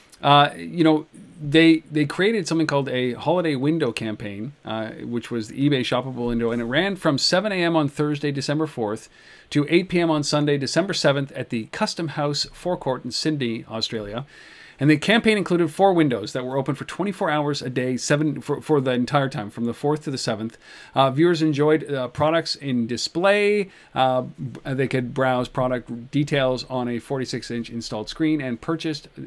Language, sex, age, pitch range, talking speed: English, male, 40-59, 125-160 Hz, 185 wpm